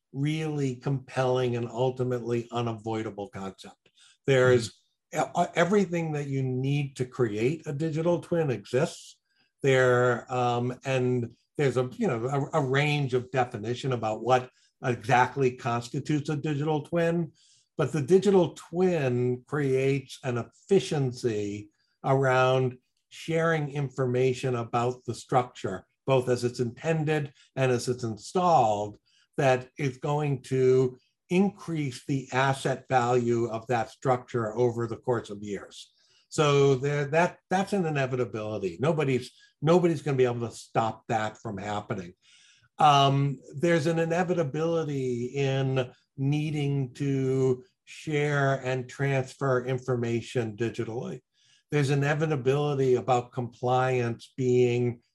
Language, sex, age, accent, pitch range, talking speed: English, male, 60-79, American, 125-145 Hz, 115 wpm